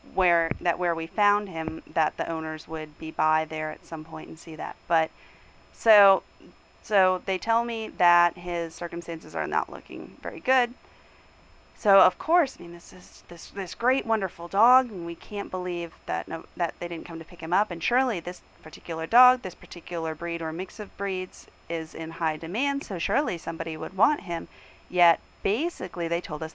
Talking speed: 195 wpm